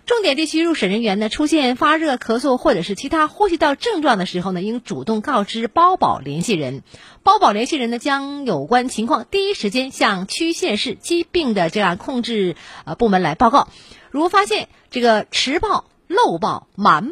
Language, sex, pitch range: Chinese, female, 185-260 Hz